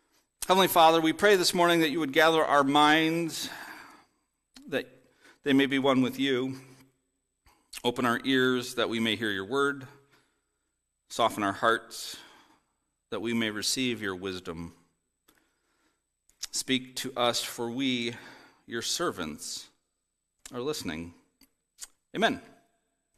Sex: male